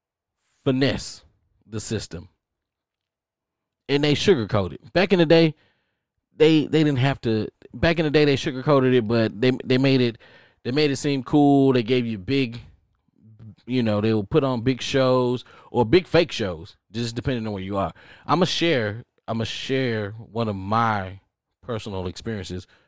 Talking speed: 175 wpm